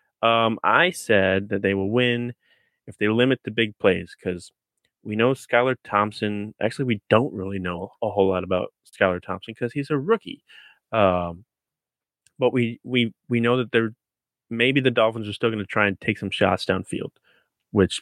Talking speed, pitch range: 180 wpm, 95-120 Hz